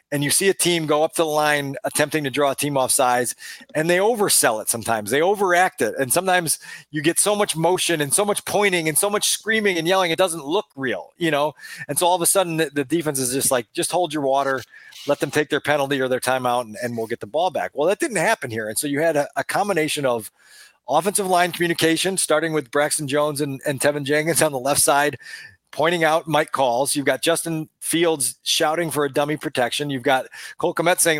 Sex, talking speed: male, 240 wpm